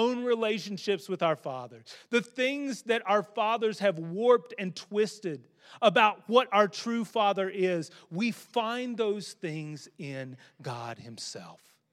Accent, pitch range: American, 155-215 Hz